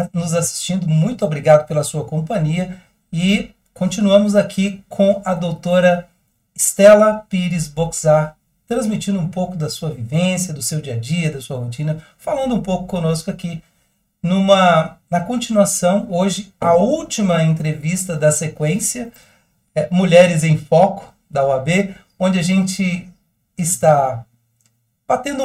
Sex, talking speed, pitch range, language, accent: male, 130 wpm, 155-200 Hz, Portuguese, Brazilian